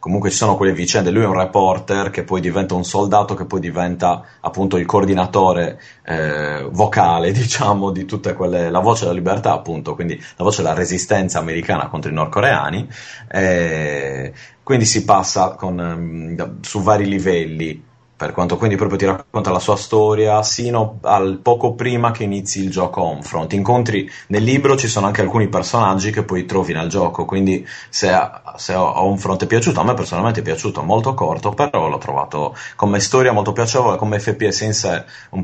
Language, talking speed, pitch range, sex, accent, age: Italian, 175 wpm, 85-105 Hz, male, native, 30-49